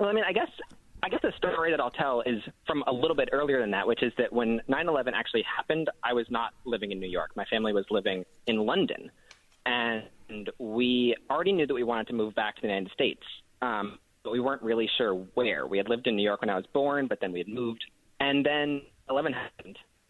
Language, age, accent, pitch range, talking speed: English, 20-39, American, 100-130 Hz, 240 wpm